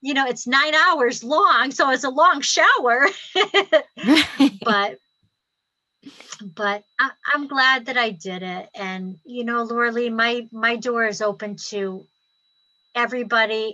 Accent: American